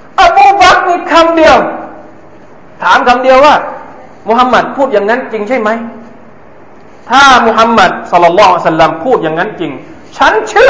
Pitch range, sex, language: 190-300 Hz, male, Thai